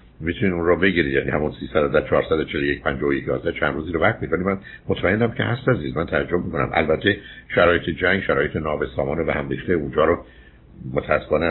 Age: 60-79